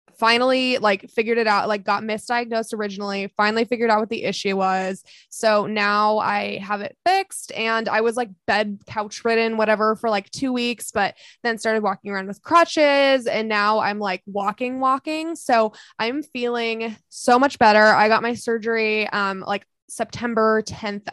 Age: 20-39